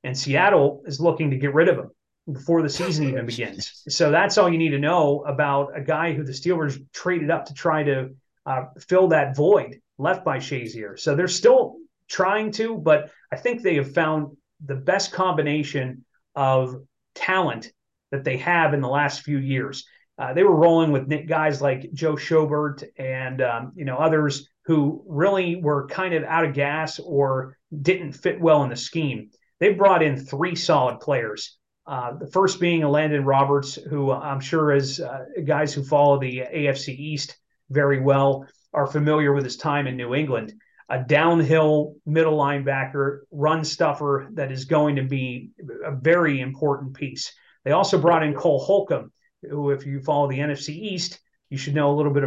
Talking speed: 185 wpm